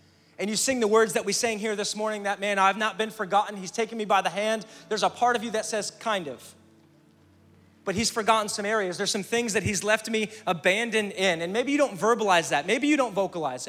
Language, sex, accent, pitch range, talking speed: English, male, American, 180-220 Hz, 245 wpm